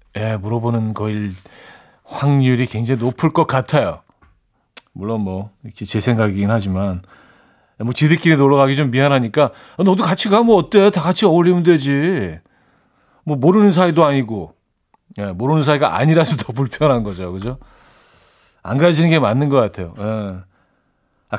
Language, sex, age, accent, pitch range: Korean, male, 40-59, native, 115-155 Hz